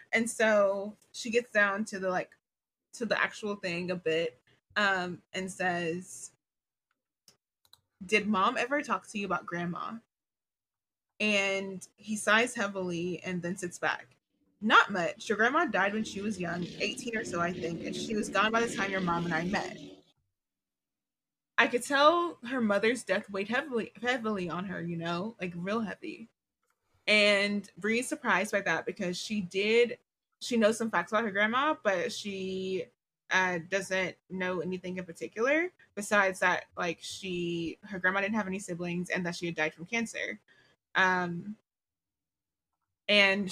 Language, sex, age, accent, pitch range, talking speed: English, female, 20-39, American, 175-215 Hz, 160 wpm